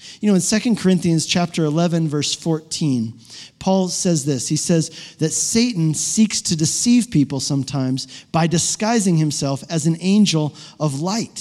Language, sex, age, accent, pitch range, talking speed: English, male, 40-59, American, 150-195 Hz, 155 wpm